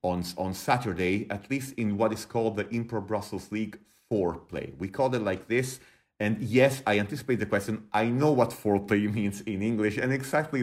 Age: 30-49